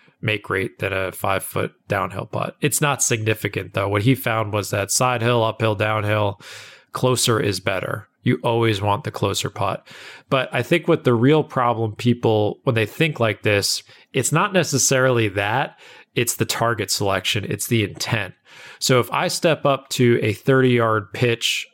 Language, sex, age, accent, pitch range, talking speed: English, male, 20-39, American, 110-140 Hz, 175 wpm